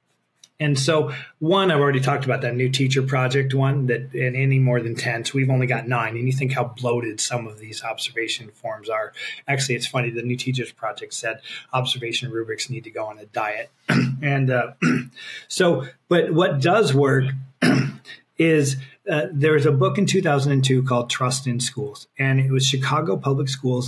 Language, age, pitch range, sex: English, 30-49, 120-140 Hz, male